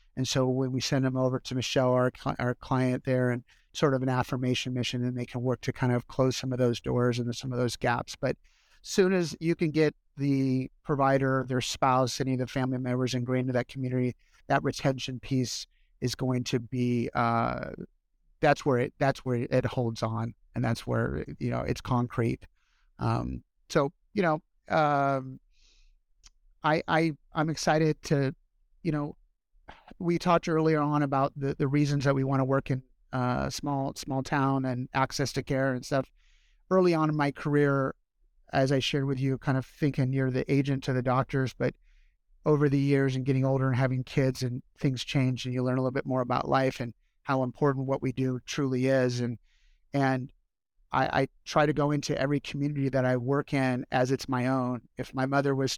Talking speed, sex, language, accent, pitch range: 200 wpm, male, English, American, 125-140 Hz